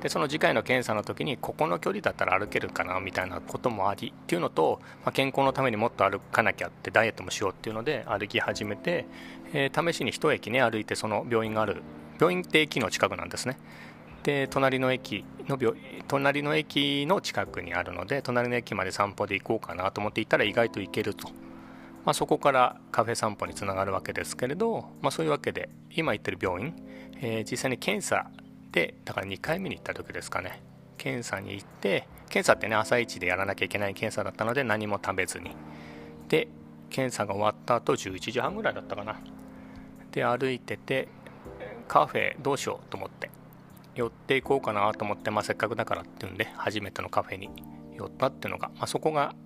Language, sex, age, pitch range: Japanese, male, 40-59, 85-135 Hz